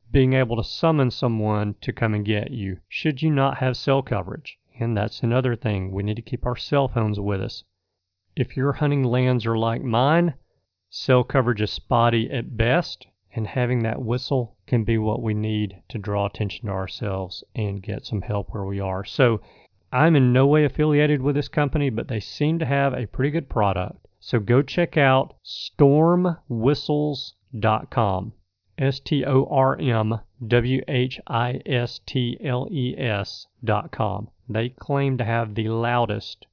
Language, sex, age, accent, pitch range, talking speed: English, male, 40-59, American, 105-140 Hz, 155 wpm